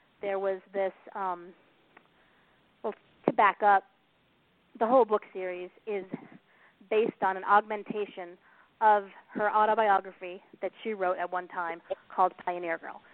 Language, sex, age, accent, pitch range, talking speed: English, female, 30-49, American, 180-215 Hz, 130 wpm